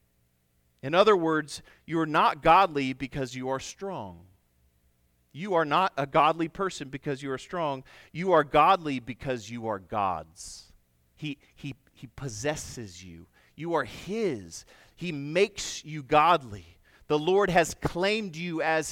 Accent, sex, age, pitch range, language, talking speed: American, male, 40-59, 120-170 Hz, English, 145 wpm